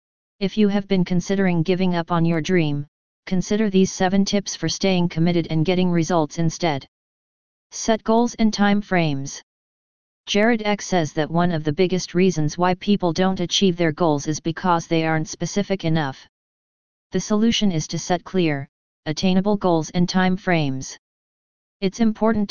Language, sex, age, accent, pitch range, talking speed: English, female, 40-59, American, 160-190 Hz, 160 wpm